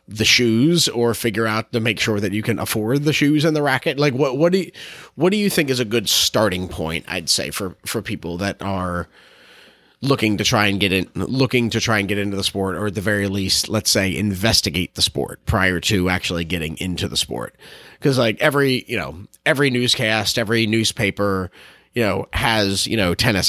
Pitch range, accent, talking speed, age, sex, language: 95-115 Hz, American, 215 wpm, 30-49, male, English